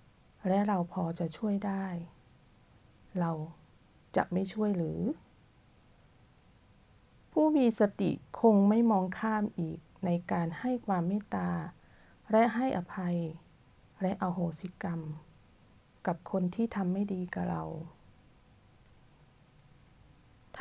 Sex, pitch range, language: female, 155-210 Hz, Thai